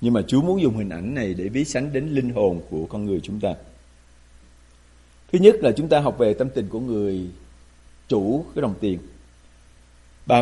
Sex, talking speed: male, 200 wpm